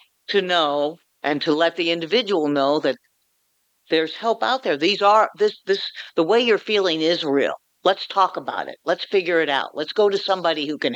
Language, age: English, 60-79